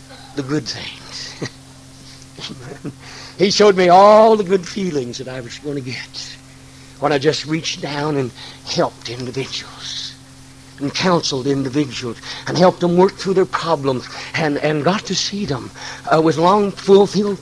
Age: 60-79